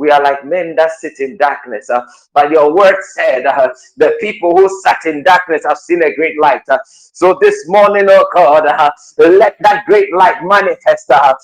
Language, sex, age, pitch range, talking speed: English, male, 50-69, 180-285 Hz, 200 wpm